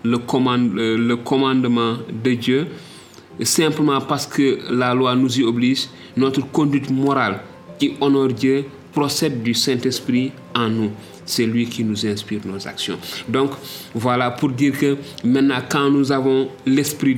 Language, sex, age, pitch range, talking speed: Finnish, male, 30-49, 115-135 Hz, 145 wpm